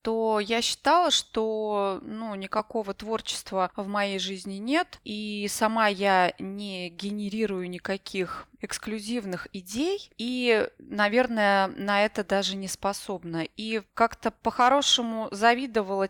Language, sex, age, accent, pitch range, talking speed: Russian, female, 20-39, native, 195-230 Hz, 110 wpm